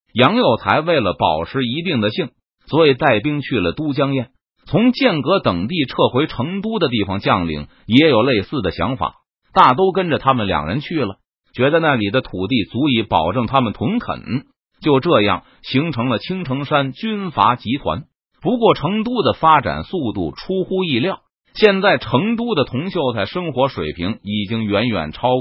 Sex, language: male, Chinese